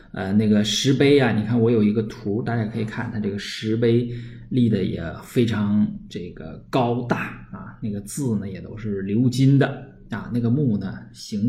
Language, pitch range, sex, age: Chinese, 105-135 Hz, male, 20-39